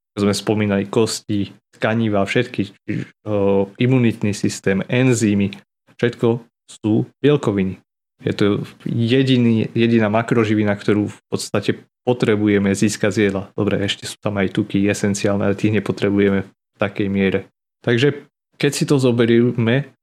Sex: male